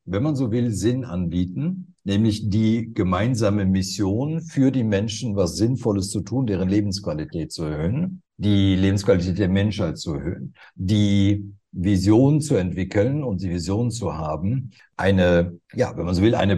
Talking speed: 155 wpm